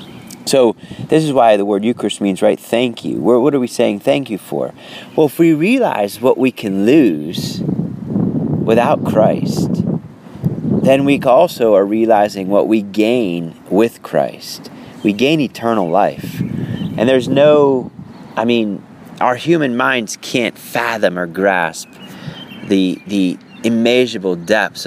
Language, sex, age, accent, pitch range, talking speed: English, male, 30-49, American, 105-150 Hz, 140 wpm